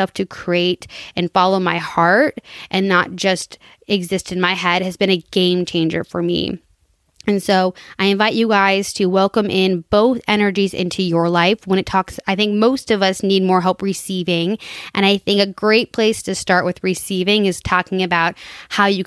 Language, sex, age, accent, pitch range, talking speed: English, female, 20-39, American, 185-210 Hz, 190 wpm